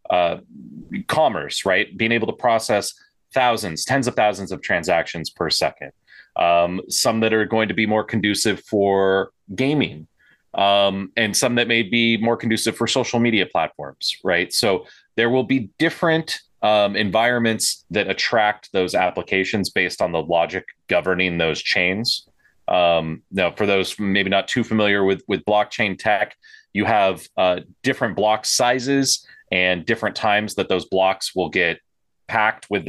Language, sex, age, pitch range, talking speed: English, male, 30-49, 95-115 Hz, 155 wpm